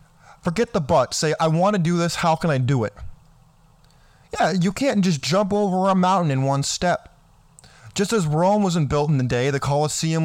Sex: male